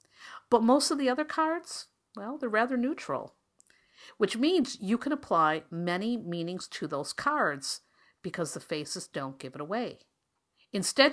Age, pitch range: 50-69, 170-250 Hz